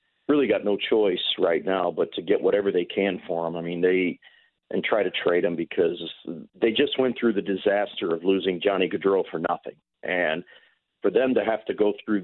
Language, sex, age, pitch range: English, male, 40-59, 95-145 Hz